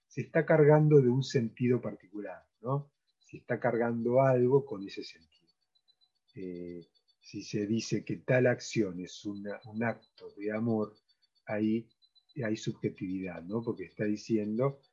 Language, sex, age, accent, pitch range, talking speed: Spanish, male, 30-49, Argentinian, 110-150 Hz, 145 wpm